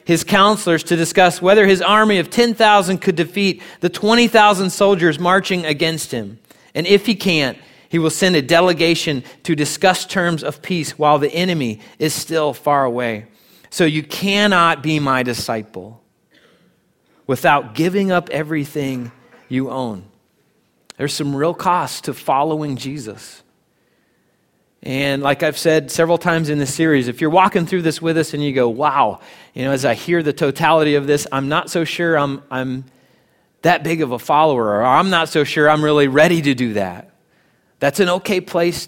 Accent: American